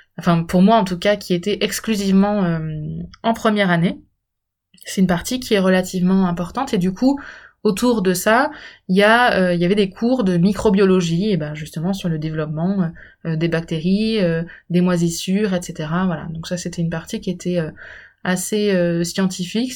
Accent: French